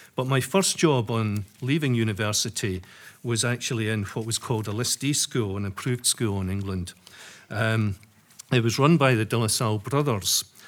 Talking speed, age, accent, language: 175 wpm, 50-69, British, English